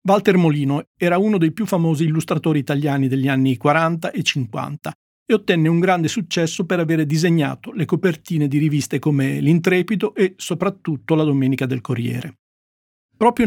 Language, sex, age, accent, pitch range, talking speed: Italian, male, 50-69, native, 145-185 Hz, 155 wpm